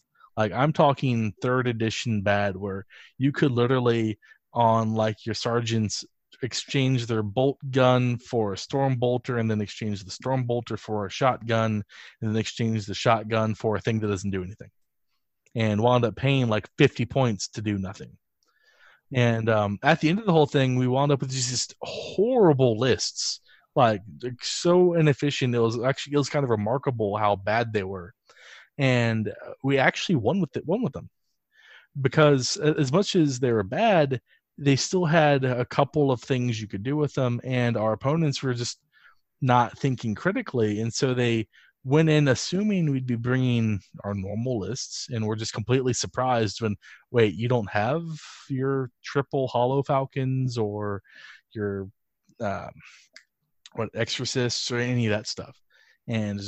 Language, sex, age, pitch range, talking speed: English, male, 20-39, 110-135 Hz, 170 wpm